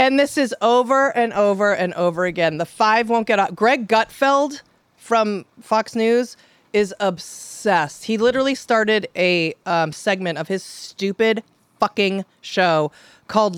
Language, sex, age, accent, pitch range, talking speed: English, female, 30-49, American, 205-280 Hz, 145 wpm